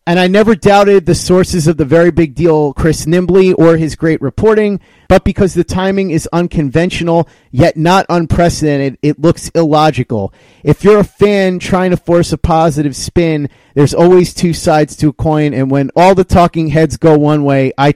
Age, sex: 30-49, male